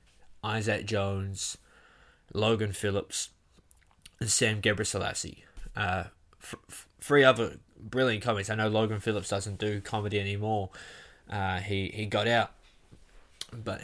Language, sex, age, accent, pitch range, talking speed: English, male, 10-29, Australian, 95-110 Hz, 115 wpm